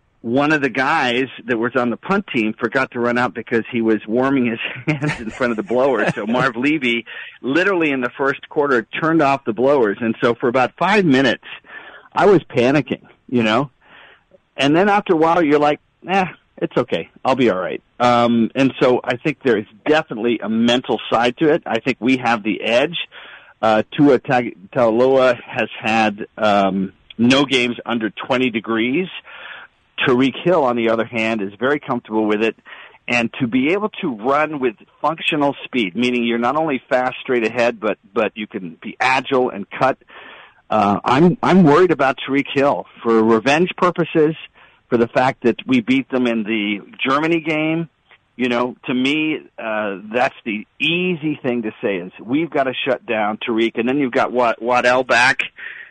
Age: 50-69